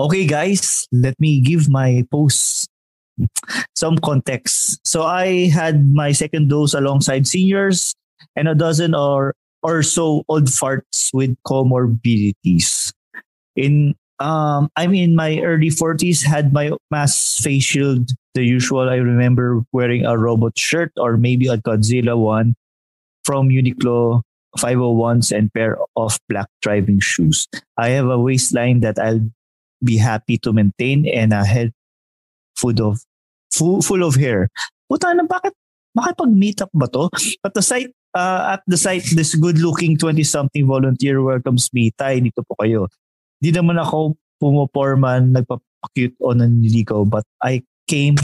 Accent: Filipino